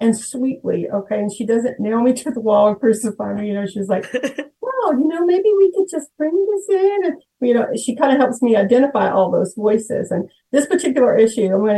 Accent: American